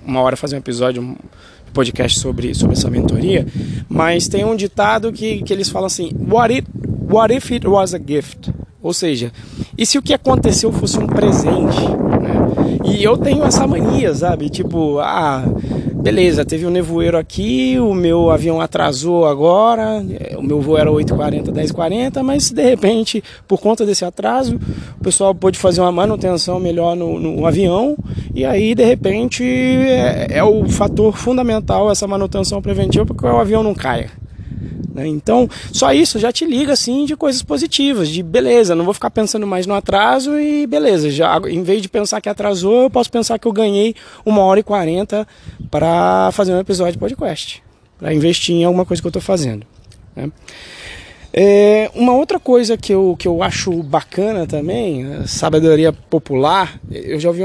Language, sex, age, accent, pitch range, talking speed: Portuguese, male, 20-39, Brazilian, 150-215 Hz, 175 wpm